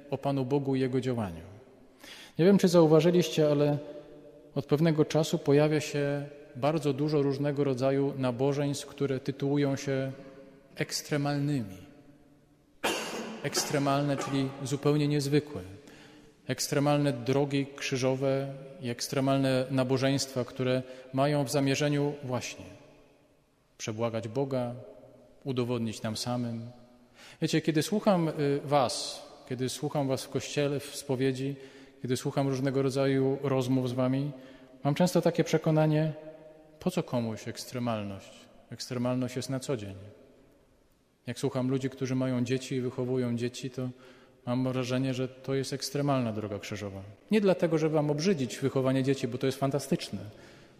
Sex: male